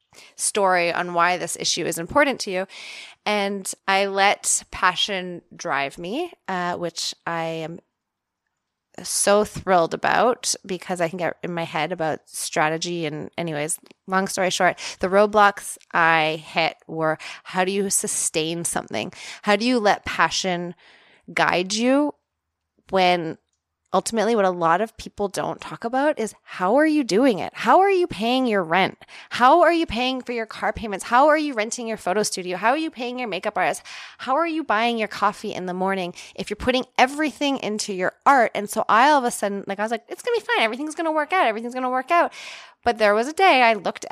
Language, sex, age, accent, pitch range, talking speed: English, female, 20-39, American, 180-245 Hz, 200 wpm